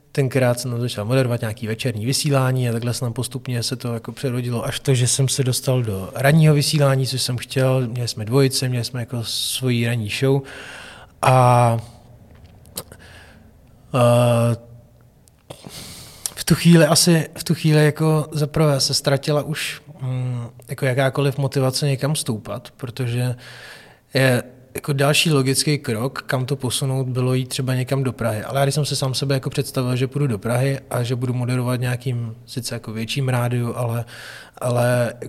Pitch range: 120-135 Hz